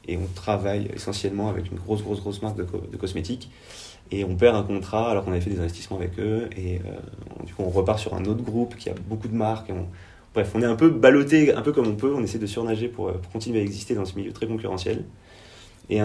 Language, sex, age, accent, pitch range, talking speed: French, male, 30-49, French, 90-110 Hz, 260 wpm